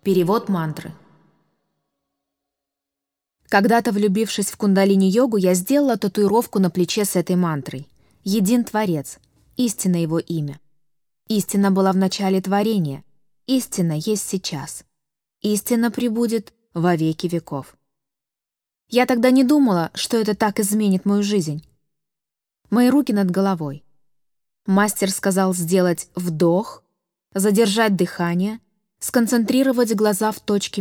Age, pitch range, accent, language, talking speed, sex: 20-39, 160-215 Hz, native, Russian, 110 wpm, female